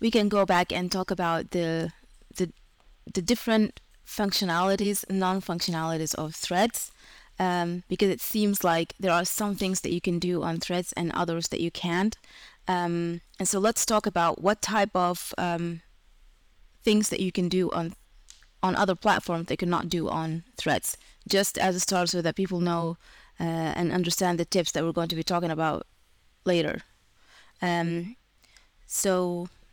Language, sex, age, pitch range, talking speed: English, female, 20-39, 165-195 Hz, 170 wpm